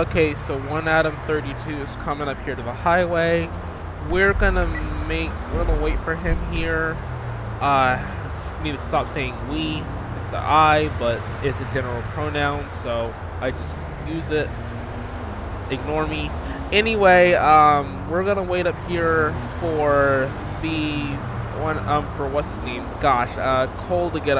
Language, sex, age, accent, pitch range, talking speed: English, male, 20-39, American, 90-145 Hz, 150 wpm